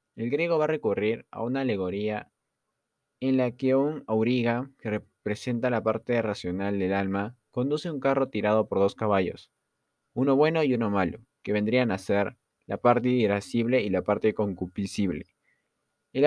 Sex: male